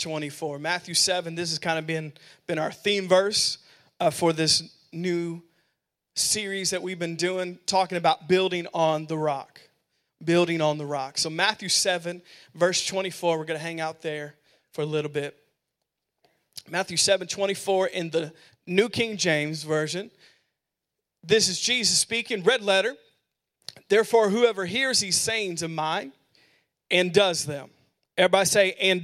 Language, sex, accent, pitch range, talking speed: English, male, American, 160-195 Hz, 155 wpm